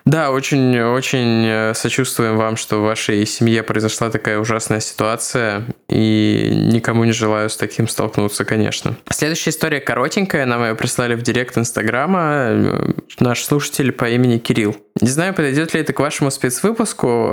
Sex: male